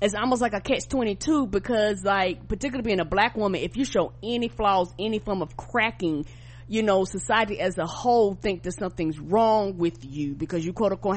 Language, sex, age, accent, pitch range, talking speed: English, female, 30-49, American, 175-225 Hz, 200 wpm